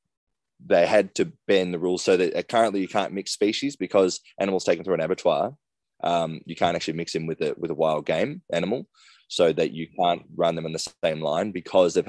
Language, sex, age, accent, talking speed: English, male, 20-39, Australian, 220 wpm